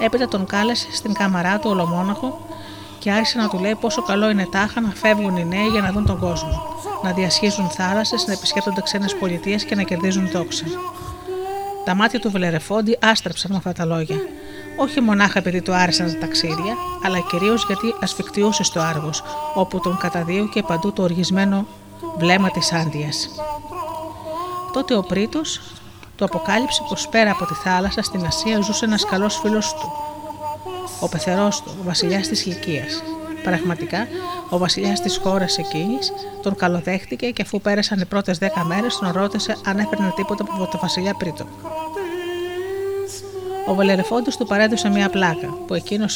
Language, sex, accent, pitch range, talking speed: Greek, female, native, 185-240 Hz, 160 wpm